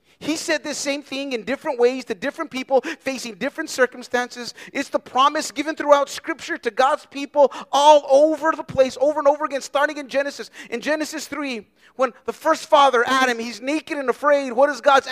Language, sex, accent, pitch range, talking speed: English, male, American, 250-315 Hz, 195 wpm